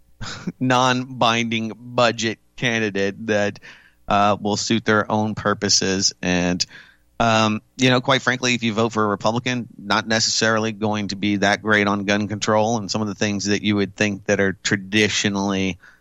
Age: 30-49